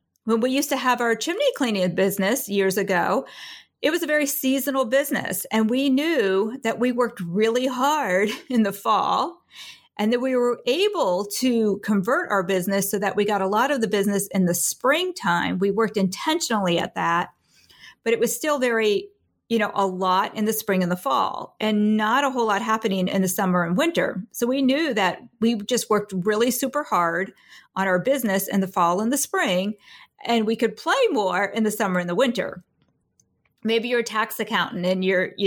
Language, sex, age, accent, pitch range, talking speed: English, female, 40-59, American, 190-250 Hz, 200 wpm